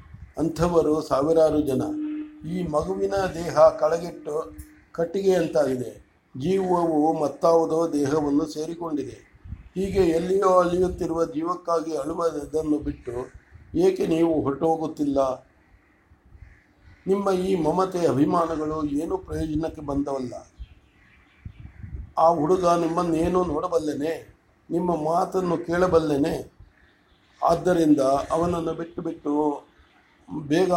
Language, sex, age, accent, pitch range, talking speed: English, male, 60-79, Indian, 145-170 Hz, 80 wpm